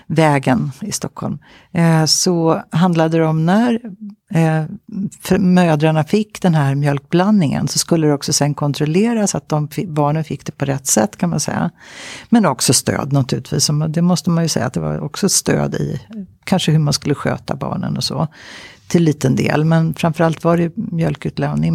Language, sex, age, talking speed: Swedish, female, 60-79, 180 wpm